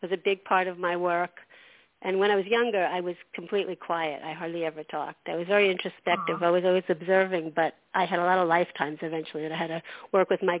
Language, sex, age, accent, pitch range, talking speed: English, female, 50-69, American, 175-200 Hz, 245 wpm